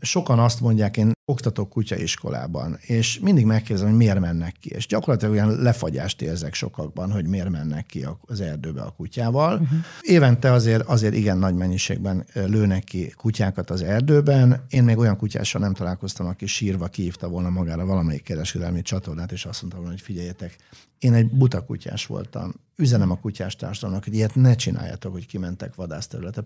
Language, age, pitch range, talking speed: Hungarian, 60-79, 95-125 Hz, 170 wpm